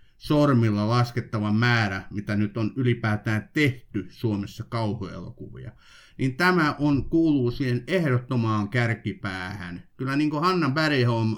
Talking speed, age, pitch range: 115 wpm, 50-69, 110-140 Hz